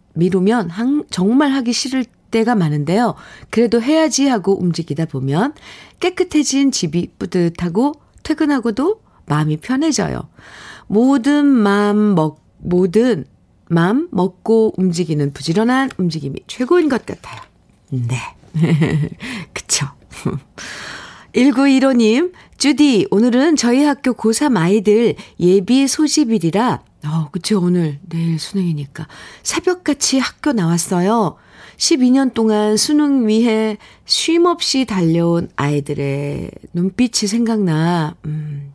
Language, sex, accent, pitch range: Korean, female, native, 175-265 Hz